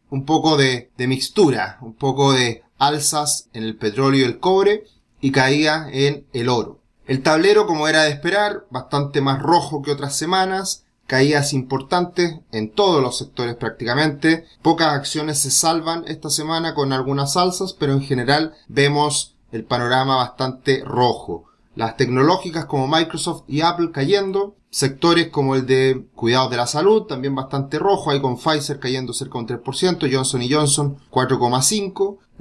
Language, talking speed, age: Spanish, 155 wpm, 30-49